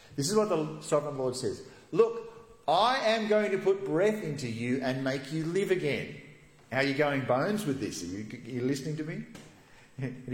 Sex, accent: male, Australian